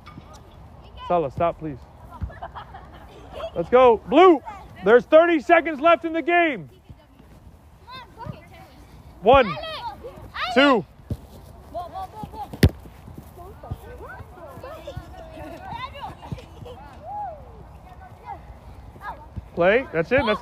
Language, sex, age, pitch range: English, male, 30-49, 295-380 Hz